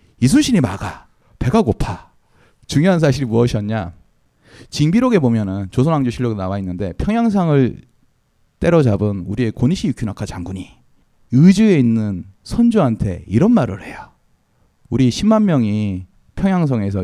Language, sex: Korean, male